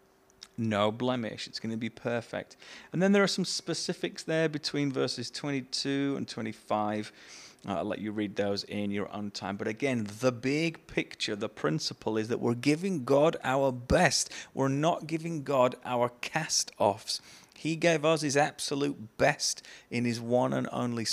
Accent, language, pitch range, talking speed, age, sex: British, English, 105-135 Hz, 170 wpm, 30-49, male